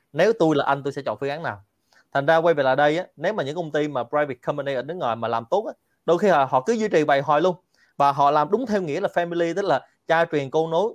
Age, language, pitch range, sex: 20-39, Vietnamese, 125-165 Hz, male